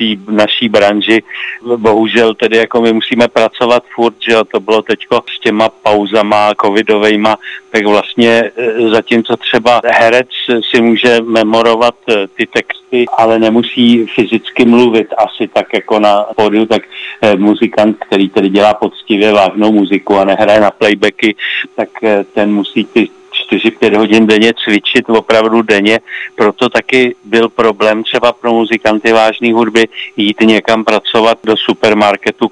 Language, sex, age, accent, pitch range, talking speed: Czech, male, 50-69, native, 105-115 Hz, 135 wpm